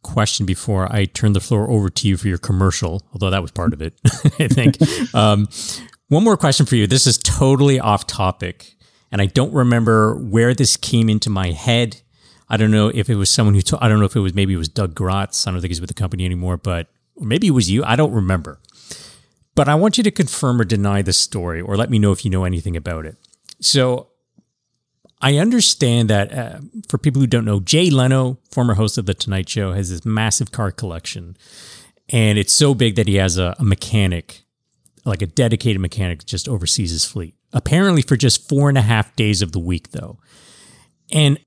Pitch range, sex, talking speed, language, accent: 95-125 Hz, male, 220 wpm, English, American